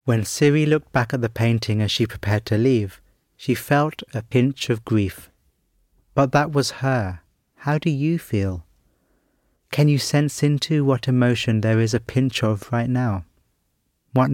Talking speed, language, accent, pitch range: 165 wpm, English, British, 100-130 Hz